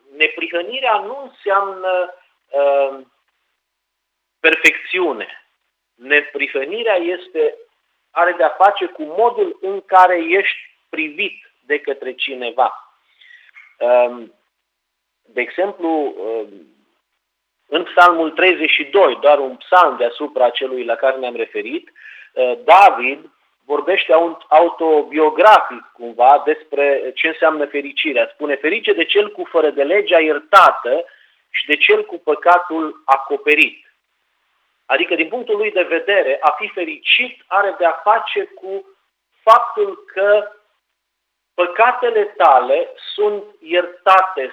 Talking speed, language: 100 wpm, Romanian